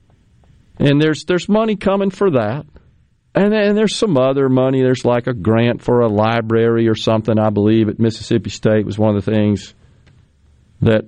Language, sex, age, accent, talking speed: English, male, 50-69, American, 180 wpm